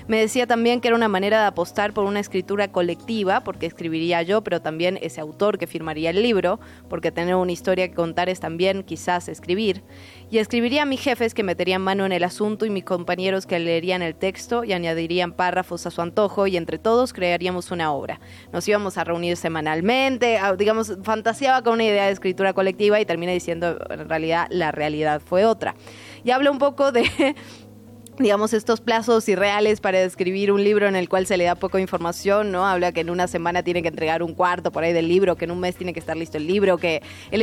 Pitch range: 170-210 Hz